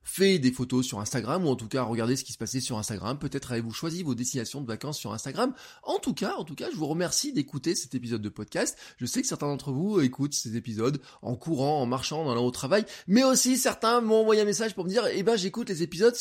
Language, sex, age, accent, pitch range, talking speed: French, male, 20-39, French, 130-195 Hz, 265 wpm